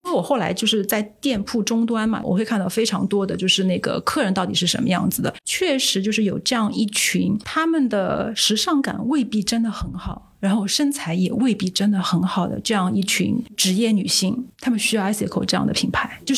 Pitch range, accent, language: 200-250 Hz, native, Chinese